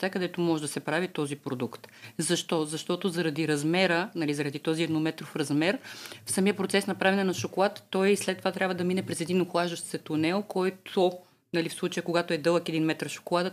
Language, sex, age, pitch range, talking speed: Bulgarian, female, 30-49, 165-220 Hz, 195 wpm